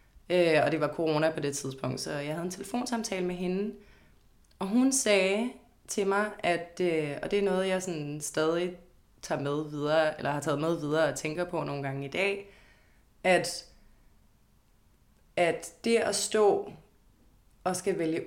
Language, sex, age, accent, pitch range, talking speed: Danish, female, 20-39, native, 155-200 Hz, 165 wpm